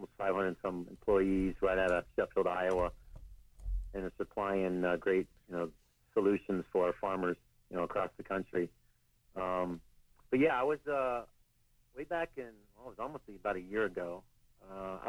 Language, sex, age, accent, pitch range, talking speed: English, male, 50-69, American, 90-110 Hz, 170 wpm